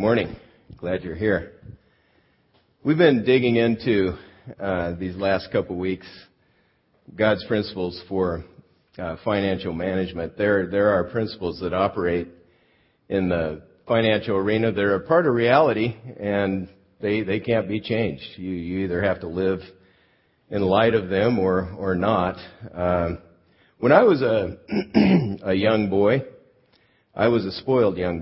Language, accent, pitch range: English, American, 85-110 Hz